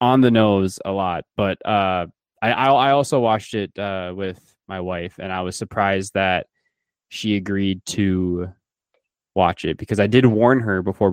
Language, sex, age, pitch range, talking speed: English, male, 20-39, 95-110 Hz, 175 wpm